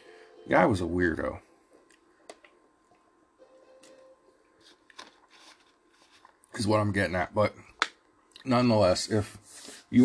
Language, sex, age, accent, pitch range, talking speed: English, male, 50-69, American, 95-110 Hz, 80 wpm